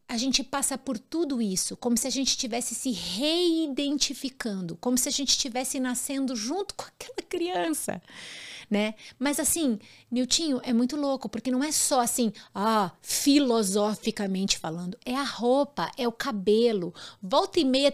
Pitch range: 195-265 Hz